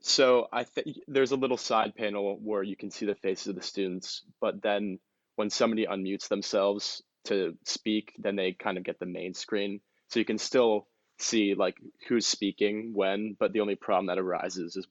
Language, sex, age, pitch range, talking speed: English, male, 20-39, 95-110 Hz, 195 wpm